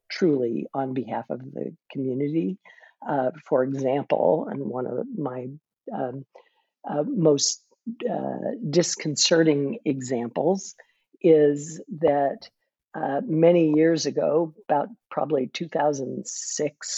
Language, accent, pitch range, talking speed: English, American, 135-160 Hz, 100 wpm